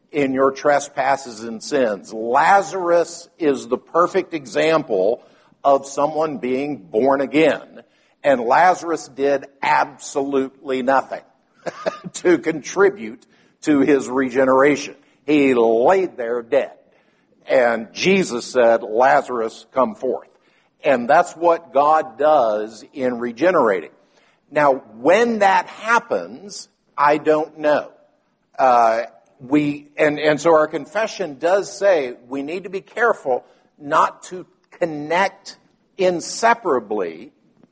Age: 60-79